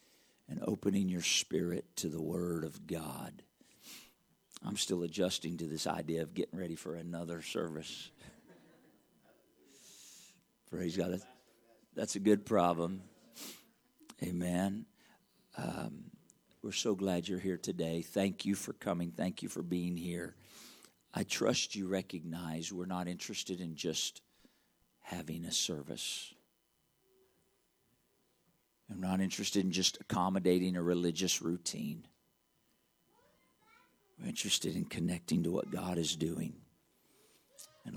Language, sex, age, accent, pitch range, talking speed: English, male, 50-69, American, 85-95 Hz, 120 wpm